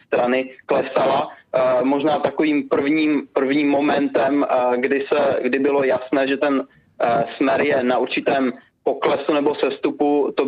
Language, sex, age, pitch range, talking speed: Czech, male, 20-39, 125-145 Hz, 120 wpm